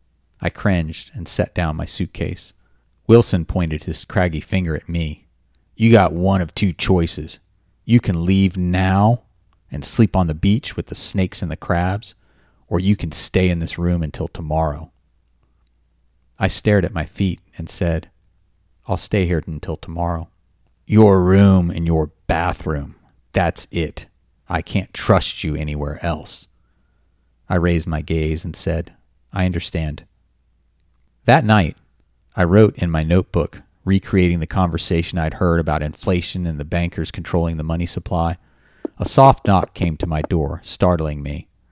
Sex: male